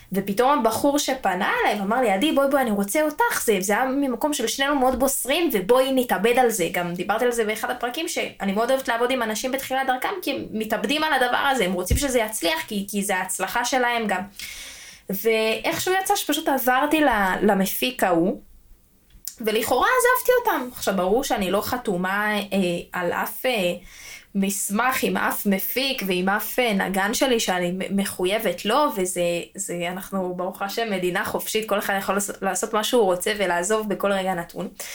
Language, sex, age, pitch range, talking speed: Hebrew, female, 20-39, 195-270 Hz, 170 wpm